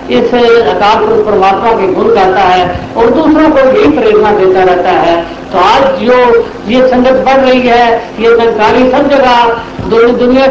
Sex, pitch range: female, 210-260 Hz